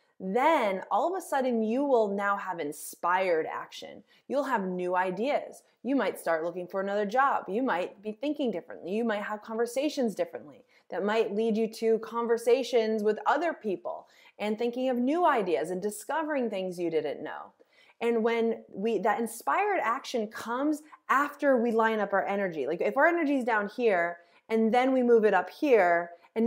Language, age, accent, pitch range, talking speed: English, 20-39, American, 195-260 Hz, 180 wpm